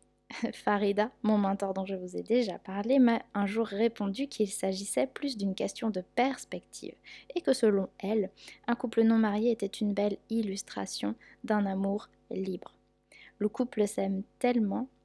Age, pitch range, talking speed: 10-29, 205-240 Hz, 155 wpm